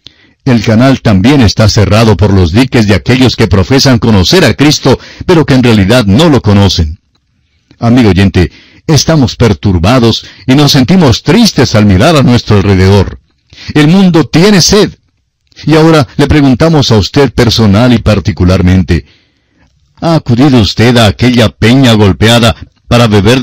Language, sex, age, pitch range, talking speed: Spanish, male, 60-79, 95-130 Hz, 145 wpm